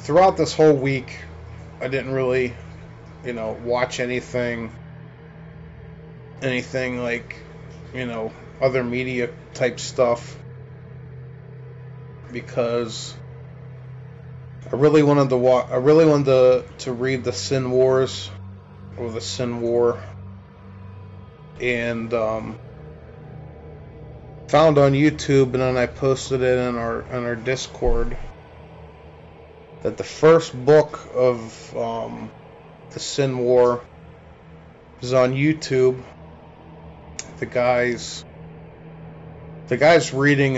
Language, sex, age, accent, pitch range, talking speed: English, male, 30-49, American, 115-140 Hz, 105 wpm